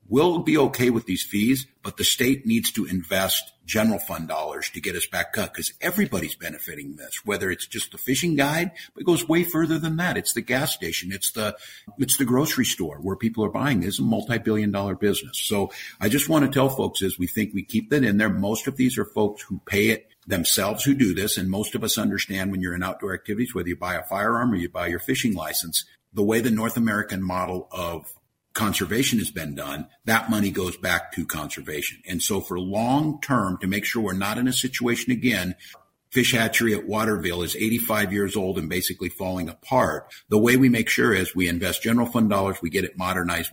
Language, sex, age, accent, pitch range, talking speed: English, male, 50-69, American, 95-125 Hz, 225 wpm